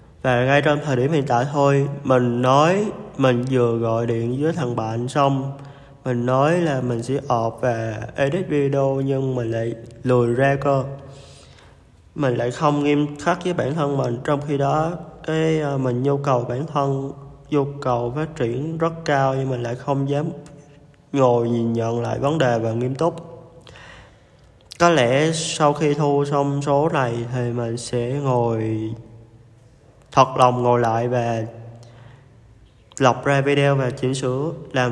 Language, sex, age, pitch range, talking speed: Vietnamese, male, 20-39, 120-145 Hz, 165 wpm